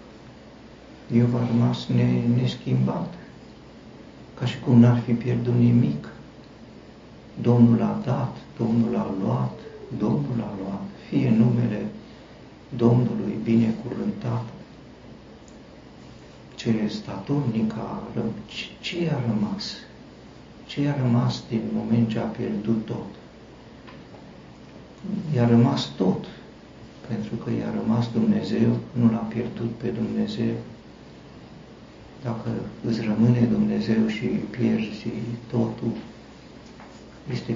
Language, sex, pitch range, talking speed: Romanian, male, 110-120 Hz, 100 wpm